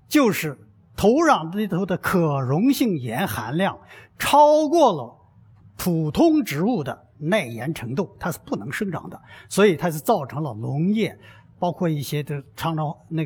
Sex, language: male, Chinese